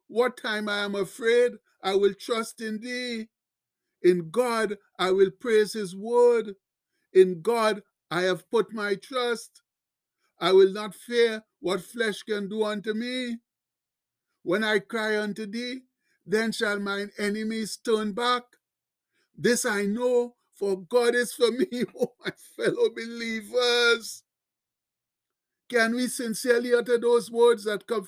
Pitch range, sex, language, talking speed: 190-235 Hz, male, English, 140 wpm